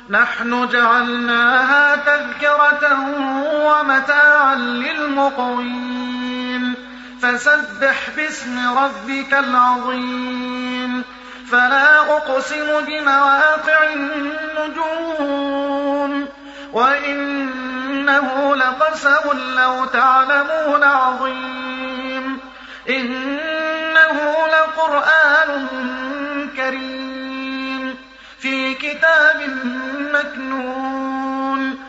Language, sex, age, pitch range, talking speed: Arabic, male, 30-49, 250-290 Hz, 45 wpm